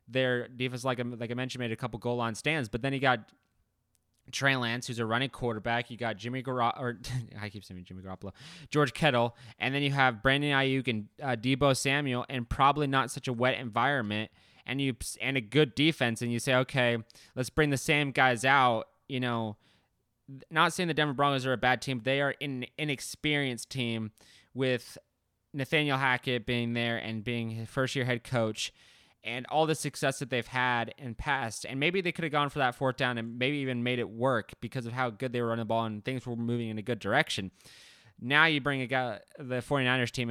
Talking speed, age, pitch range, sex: 215 wpm, 20-39, 115-135 Hz, male